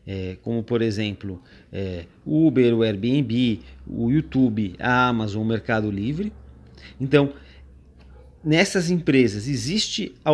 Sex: male